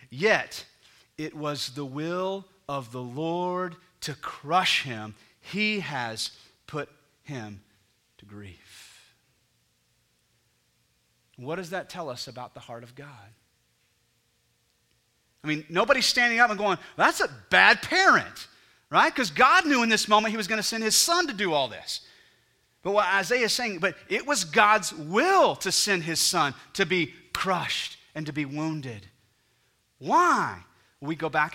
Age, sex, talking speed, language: 30-49, male, 155 wpm, English